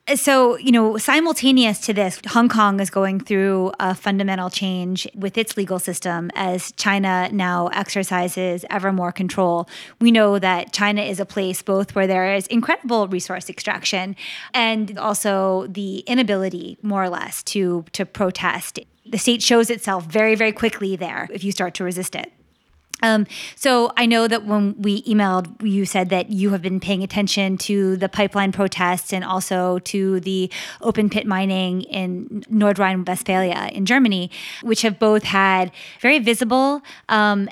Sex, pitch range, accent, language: female, 190-225 Hz, American, English